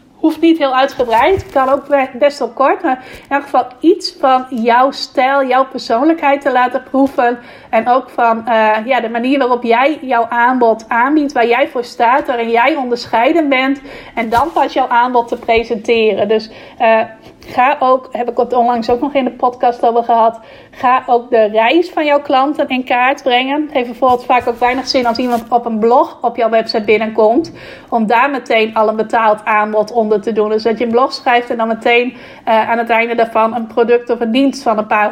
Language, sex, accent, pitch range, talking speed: Dutch, female, Dutch, 230-265 Hz, 210 wpm